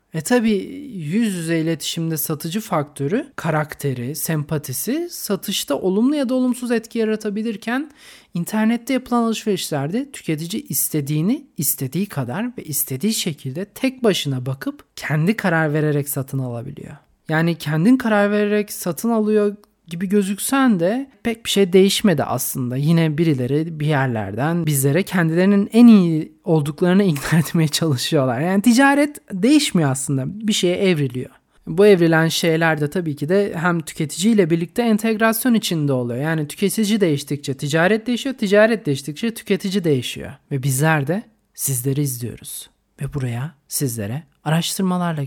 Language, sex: Turkish, male